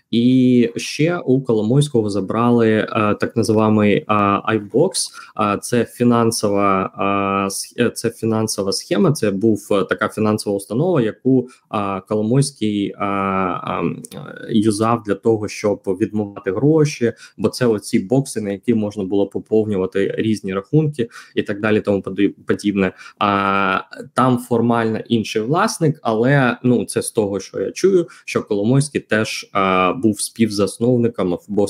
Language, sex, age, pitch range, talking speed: Ukrainian, male, 20-39, 100-120 Hz, 125 wpm